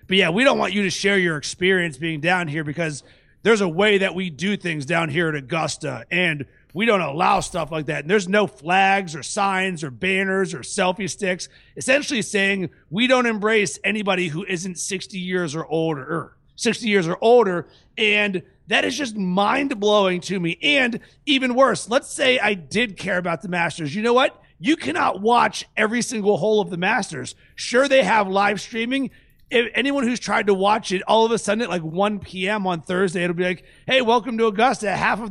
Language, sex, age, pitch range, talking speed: English, male, 30-49, 185-230 Hz, 205 wpm